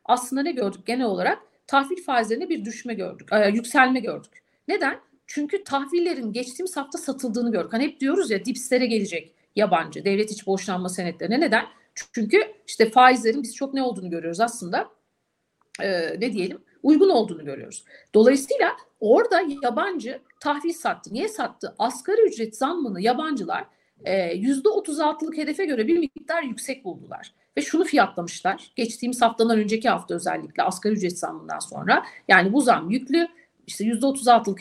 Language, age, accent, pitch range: Turkish, 50-69, native, 215-305 Hz